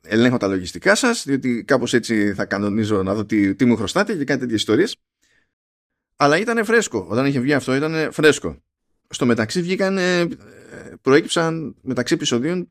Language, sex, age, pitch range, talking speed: Greek, male, 20-39, 105-145 Hz, 160 wpm